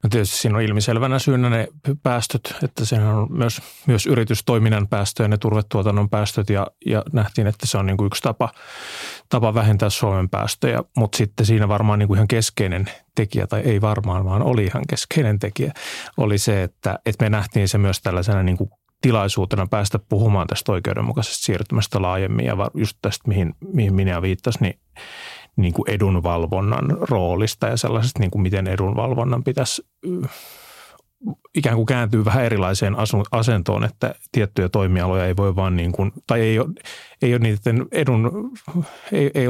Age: 30-49